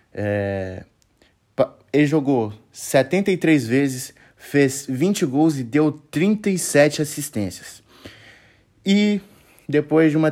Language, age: Portuguese, 20-39